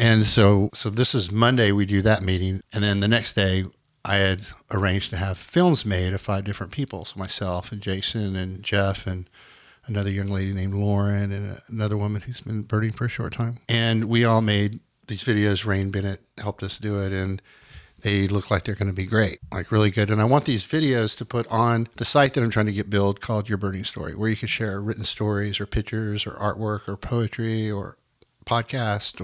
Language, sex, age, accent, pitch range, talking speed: English, male, 50-69, American, 100-120 Hz, 220 wpm